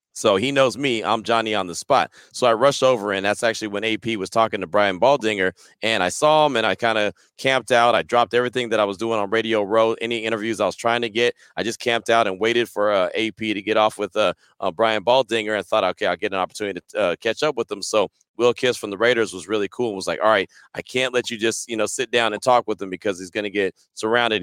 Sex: male